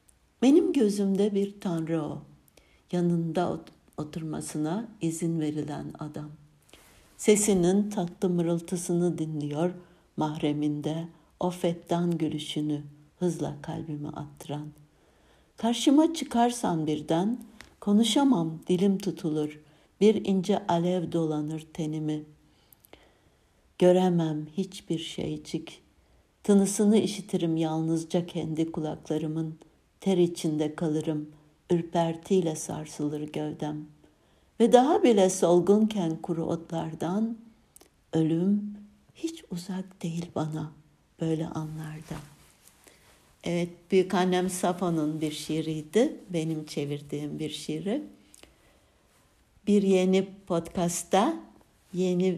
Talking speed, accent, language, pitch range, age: 85 wpm, native, Turkish, 155-190 Hz, 60-79